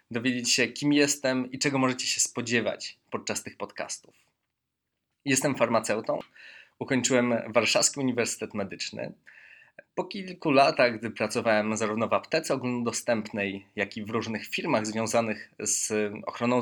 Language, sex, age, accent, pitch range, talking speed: Polish, male, 20-39, native, 110-135 Hz, 125 wpm